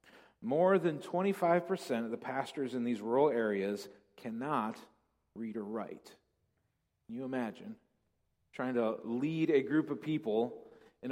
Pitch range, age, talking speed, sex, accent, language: 115-150 Hz, 40-59, 135 wpm, male, American, English